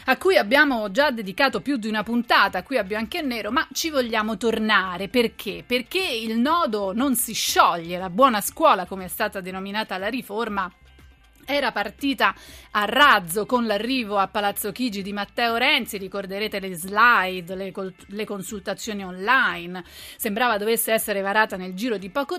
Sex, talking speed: female, 160 wpm